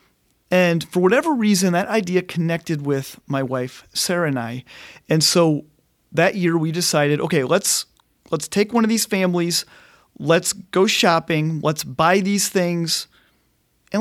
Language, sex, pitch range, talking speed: English, male, 155-195 Hz, 150 wpm